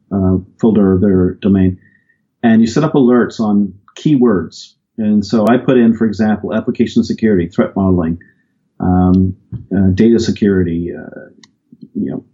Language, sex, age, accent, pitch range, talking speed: English, male, 40-59, American, 100-120 Hz, 145 wpm